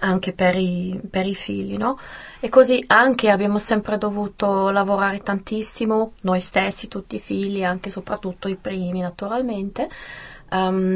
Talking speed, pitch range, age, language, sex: 140 wpm, 190-215 Hz, 20-39, Italian, female